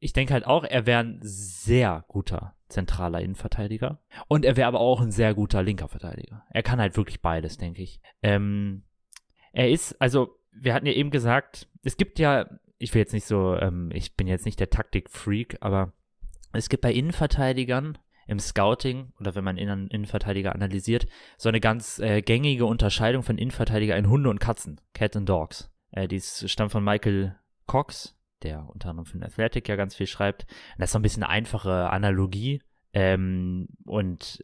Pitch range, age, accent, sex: 95-115 Hz, 20-39, German, male